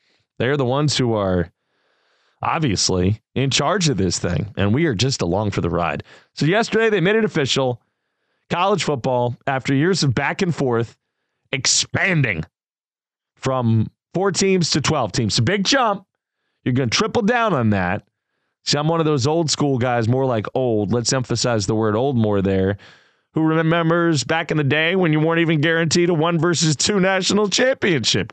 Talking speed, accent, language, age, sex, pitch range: 180 wpm, American, English, 30-49, male, 120-170 Hz